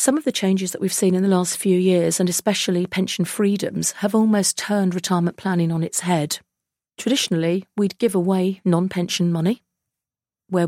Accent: British